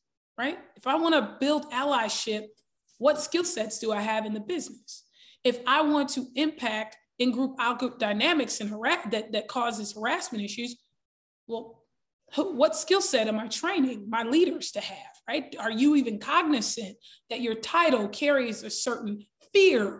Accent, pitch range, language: American, 220-280 Hz, English